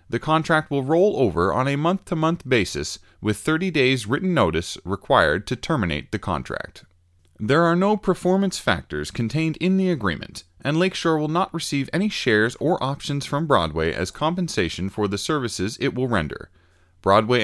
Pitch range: 105-165 Hz